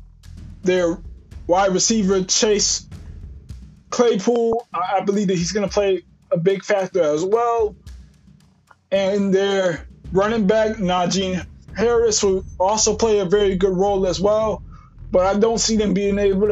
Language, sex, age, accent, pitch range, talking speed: English, male, 20-39, American, 170-200 Hz, 140 wpm